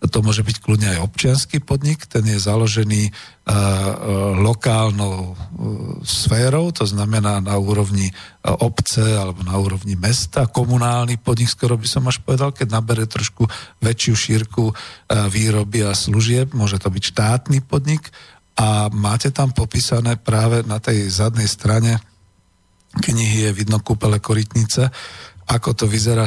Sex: male